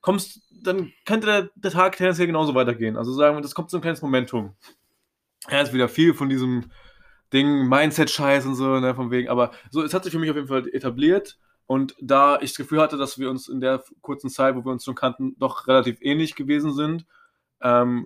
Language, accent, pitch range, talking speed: German, German, 125-155 Hz, 225 wpm